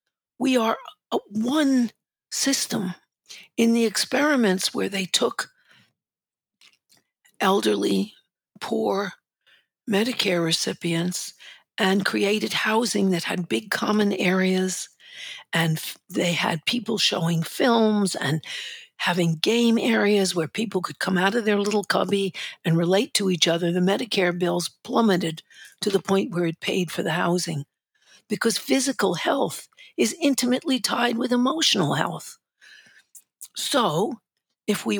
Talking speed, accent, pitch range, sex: 120 wpm, American, 175-230 Hz, female